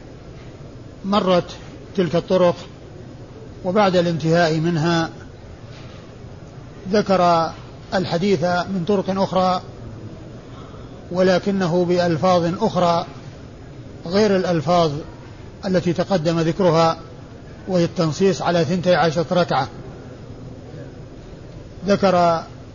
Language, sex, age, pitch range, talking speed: Arabic, male, 50-69, 130-185 Hz, 65 wpm